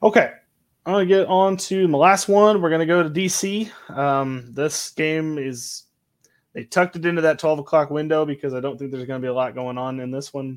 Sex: male